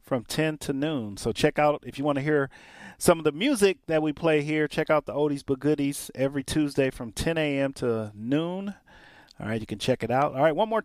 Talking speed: 250 wpm